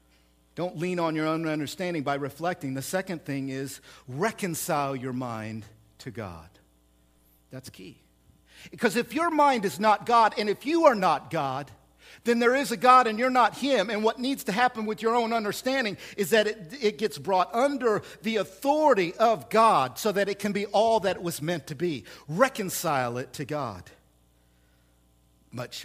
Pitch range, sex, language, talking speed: 115-185 Hz, male, English, 180 wpm